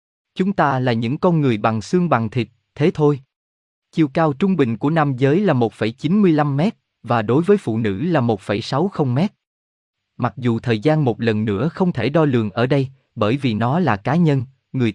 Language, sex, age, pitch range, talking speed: Vietnamese, male, 20-39, 110-160 Hz, 200 wpm